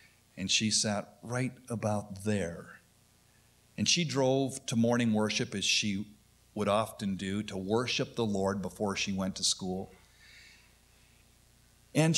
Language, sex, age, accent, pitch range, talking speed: English, male, 50-69, American, 95-120 Hz, 135 wpm